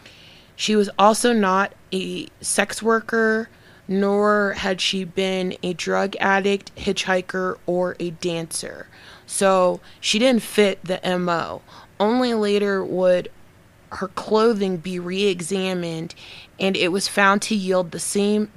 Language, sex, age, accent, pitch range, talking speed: English, female, 20-39, American, 175-200 Hz, 125 wpm